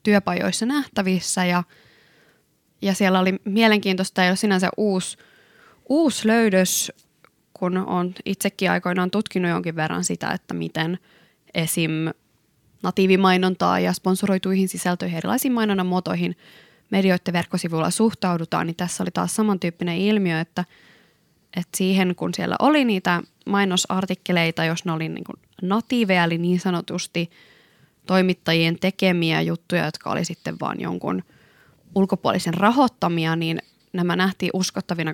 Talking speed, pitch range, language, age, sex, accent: 120 wpm, 170-200 Hz, Finnish, 20-39, female, native